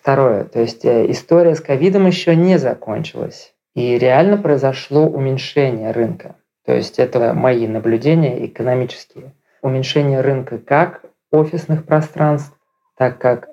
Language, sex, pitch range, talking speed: Russian, male, 120-150 Hz, 120 wpm